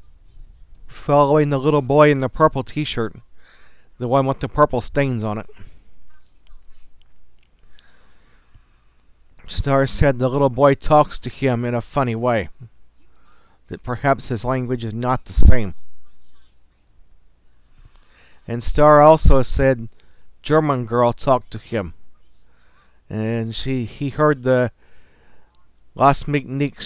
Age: 50-69